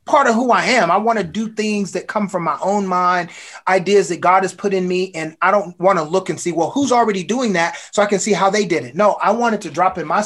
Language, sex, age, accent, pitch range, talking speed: English, male, 30-49, American, 165-215 Hz, 305 wpm